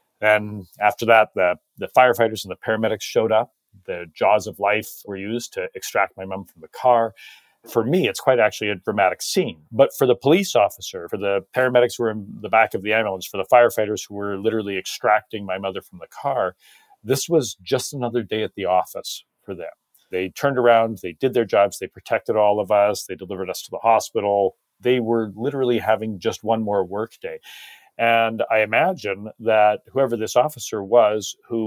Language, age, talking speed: English, 40-59, 200 wpm